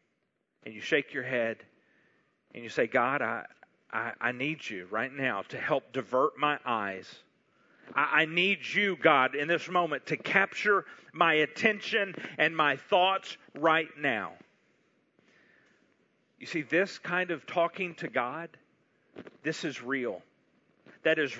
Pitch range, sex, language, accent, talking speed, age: 155-215 Hz, male, English, American, 145 wpm, 40-59